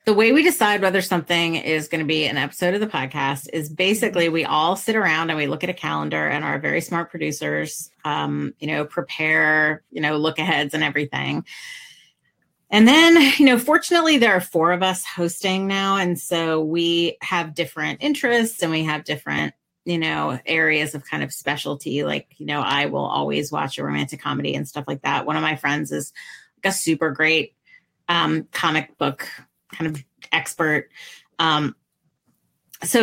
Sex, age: female, 30-49